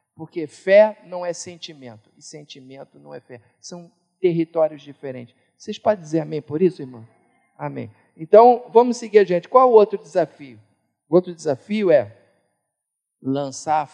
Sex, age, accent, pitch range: male, 50-69, Brazilian, 150-215 Hz